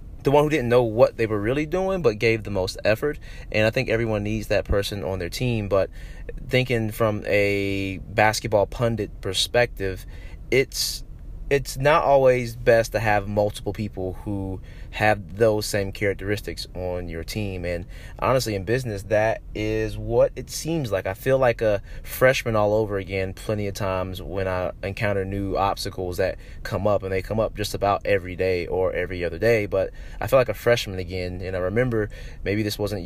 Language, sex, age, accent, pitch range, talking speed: English, male, 30-49, American, 95-110 Hz, 185 wpm